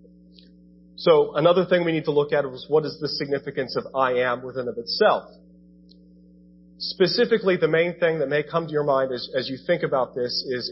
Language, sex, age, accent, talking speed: English, male, 30-49, American, 195 wpm